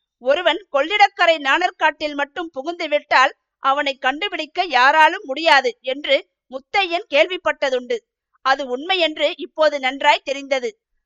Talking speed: 105 wpm